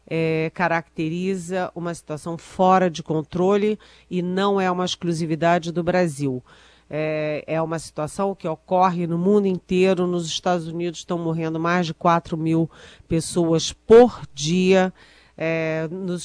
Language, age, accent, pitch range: Portuguese, 40-59, Brazilian, 160-185 Hz